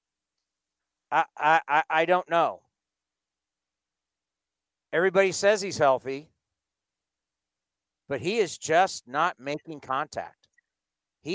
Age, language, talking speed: 50-69, English, 90 wpm